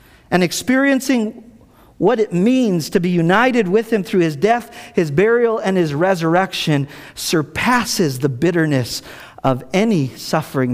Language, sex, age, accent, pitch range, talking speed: English, male, 50-69, American, 135-175 Hz, 135 wpm